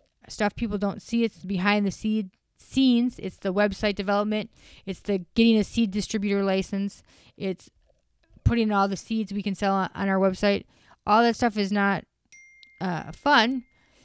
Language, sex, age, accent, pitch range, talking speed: English, female, 20-39, American, 200-240 Hz, 165 wpm